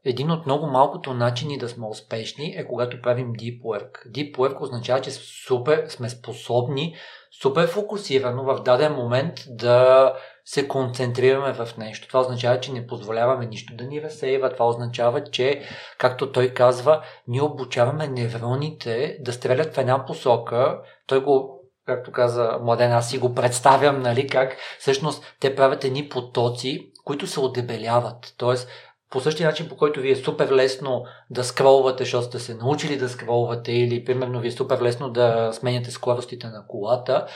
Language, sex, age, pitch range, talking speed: Bulgarian, male, 40-59, 120-145 Hz, 160 wpm